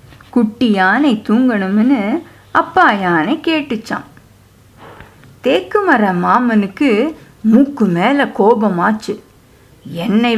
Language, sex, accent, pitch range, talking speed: Tamil, female, native, 195-270 Hz, 75 wpm